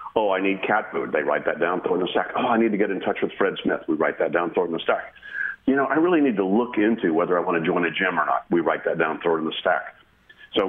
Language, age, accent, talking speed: English, 50-69, American, 335 wpm